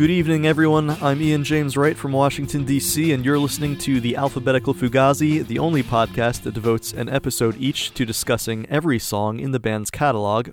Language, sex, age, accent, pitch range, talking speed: English, male, 30-49, American, 115-140 Hz, 190 wpm